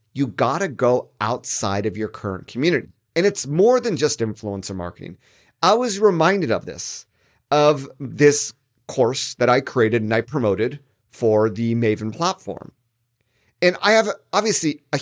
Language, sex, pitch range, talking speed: English, male, 115-155 Hz, 155 wpm